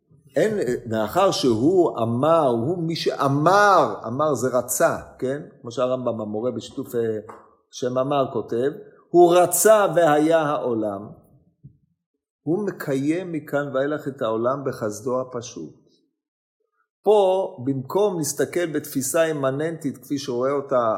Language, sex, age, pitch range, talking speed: Hebrew, male, 50-69, 145-205 Hz, 110 wpm